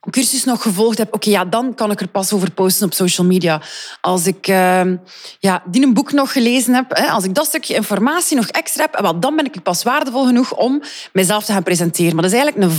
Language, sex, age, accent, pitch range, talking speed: Dutch, female, 30-49, Dutch, 185-260 Hz, 240 wpm